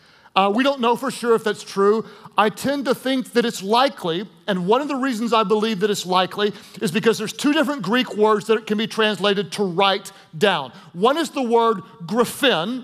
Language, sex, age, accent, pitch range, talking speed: English, male, 40-59, American, 210-260 Hz, 210 wpm